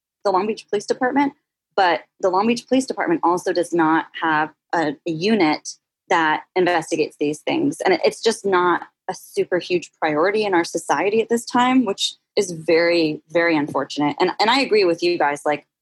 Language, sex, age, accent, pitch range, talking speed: English, female, 20-39, American, 160-210 Hz, 180 wpm